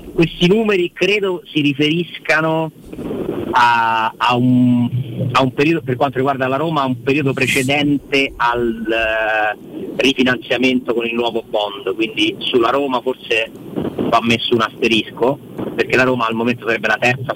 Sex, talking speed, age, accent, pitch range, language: male, 110 wpm, 40-59, native, 110-135 Hz, Italian